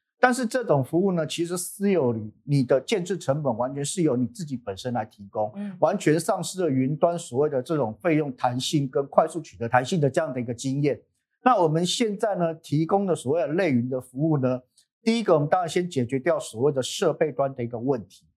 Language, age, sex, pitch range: Chinese, 50-69, male, 130-180 Hz